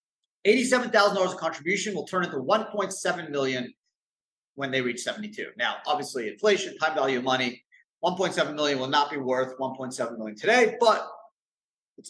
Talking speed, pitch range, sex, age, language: 150 wpm, 130-205 Hz, male, 40-59, English